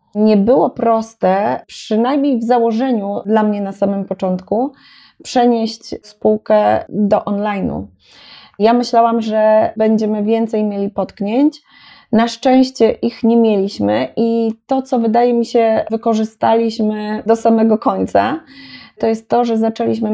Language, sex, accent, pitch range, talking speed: Polish, female, native, 205-245 Hz, 125 wpm